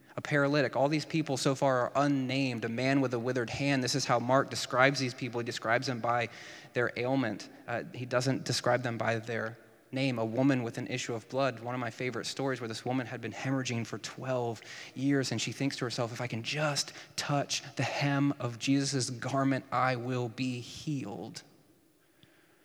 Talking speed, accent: 200 wpm, American